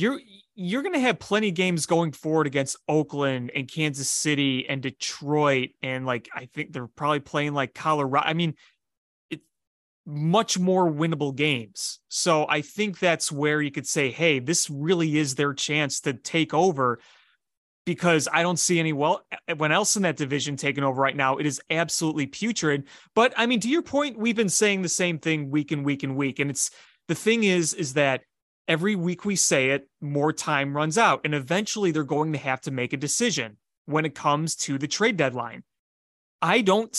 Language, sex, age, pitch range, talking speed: English, male, 30-49, 145-185 Hz, 195 wpm